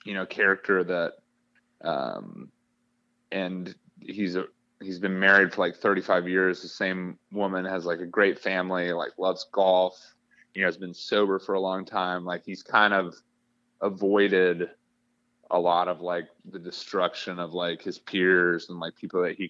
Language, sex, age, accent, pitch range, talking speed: English, male, 30-49, American, 85-95 Hz, 170 wpm